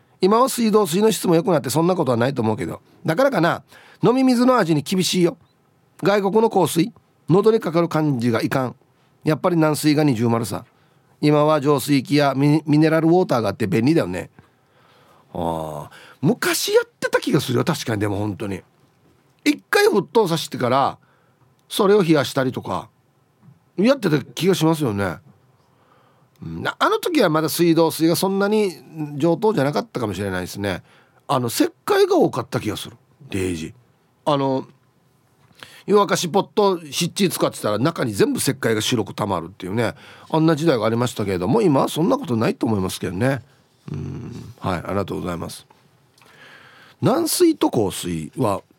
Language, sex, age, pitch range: Japanese, male, 40-59, 125-180 Hz